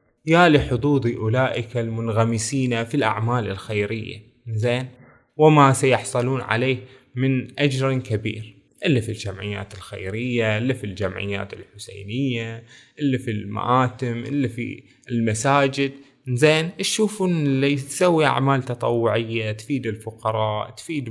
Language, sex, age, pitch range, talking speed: Arabic, male, 20-39, 115-150 Hz, 105 wpm